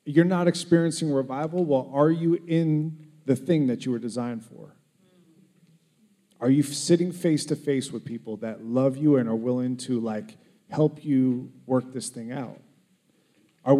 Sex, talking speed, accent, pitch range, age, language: male, 155 wpm, American, 130-170 Hz, 40-59, English